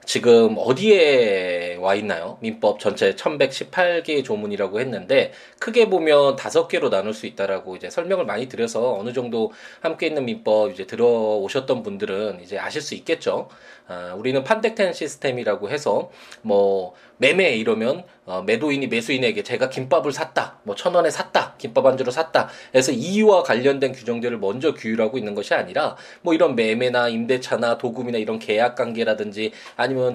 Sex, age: male, 20-39